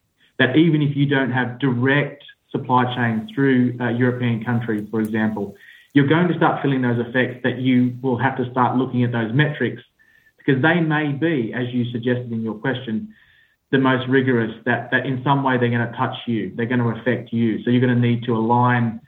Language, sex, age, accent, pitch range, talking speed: English, male, 20-39, Australian, 115-135 Hz, 210 wpm